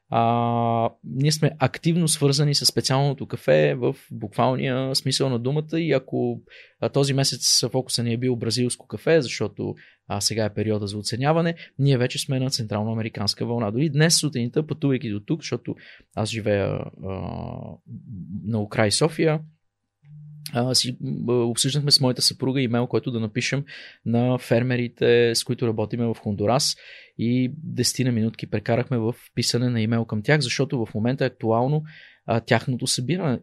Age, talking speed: 20-39, 150 wpm